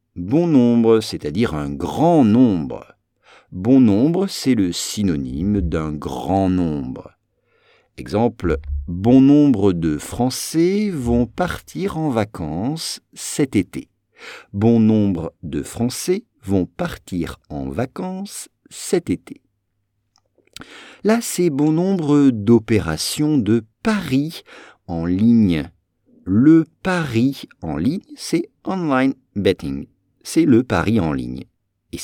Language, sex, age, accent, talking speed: English, male, 50-69, French, 105 wpm